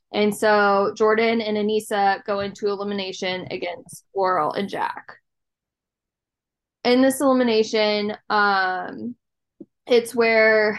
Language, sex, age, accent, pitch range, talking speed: English, female, 10-29, American, 200-225 Hz, 100 wpm